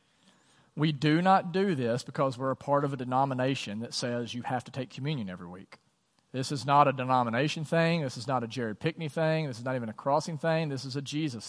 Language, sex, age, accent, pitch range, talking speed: English, male, 40-59, American, 125-160 Hz, 235 wpm